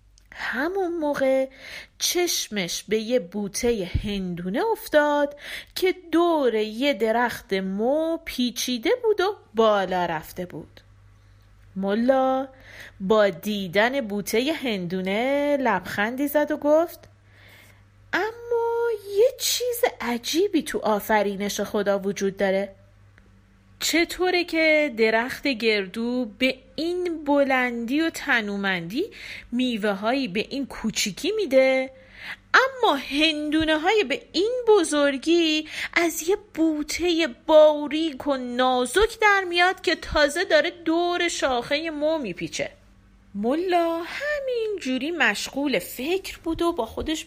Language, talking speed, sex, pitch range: Persian, 100 wpm, female, 200-330 Hz